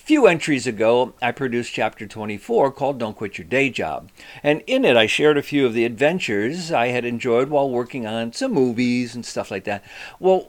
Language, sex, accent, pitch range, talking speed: English, male, American, 120-170 Hz, 210 wpm